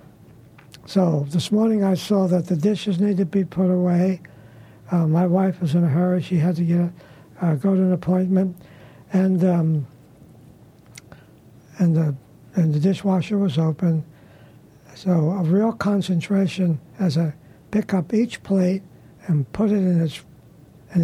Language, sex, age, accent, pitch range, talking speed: English, male, 60-79, American, 145-195 Hz, 160 wpm